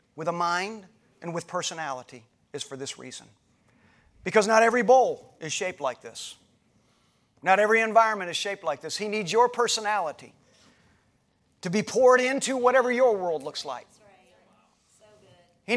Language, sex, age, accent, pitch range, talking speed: English, male, 40-59, American, 170-260 Hz, 150 wpm